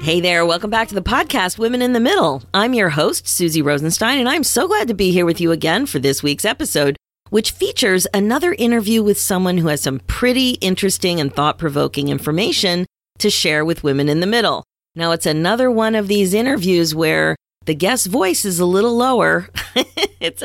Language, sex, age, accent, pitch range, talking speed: English, female, 40-59, American, 165-230 Hz, 195 wpm